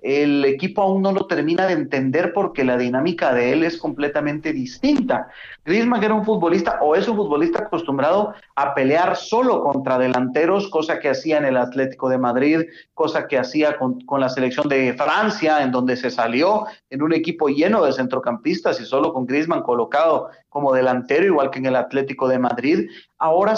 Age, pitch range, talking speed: 40-59, 145-195 Hz, 185 wpm